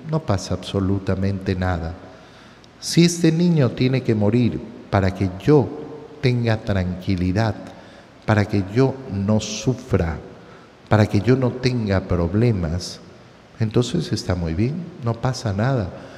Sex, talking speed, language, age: male, 120 wpm, Spanish, 50-69